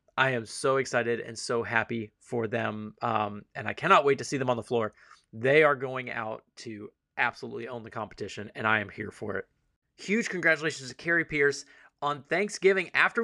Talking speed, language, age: 195 wpm, English, 30-49